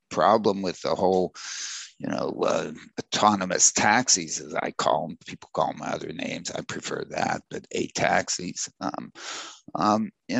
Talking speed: 160 wpm